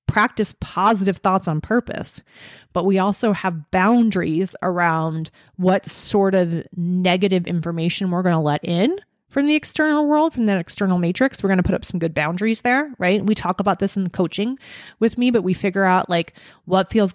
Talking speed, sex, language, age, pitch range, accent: 195 wpm, female, English, 30-49, 175-215 Hz, American